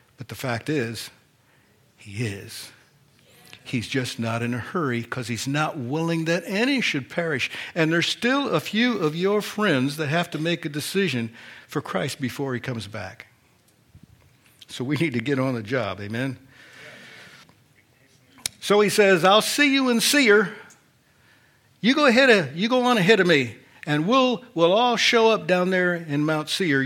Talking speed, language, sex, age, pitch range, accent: 175 wpm, English, male, 60-79, 125-185 Hz, American